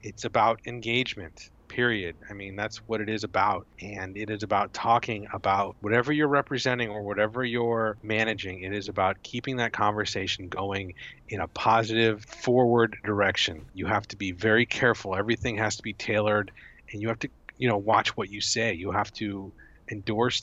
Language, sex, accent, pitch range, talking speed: English, male, American, 100-120 Hz, 180 wpm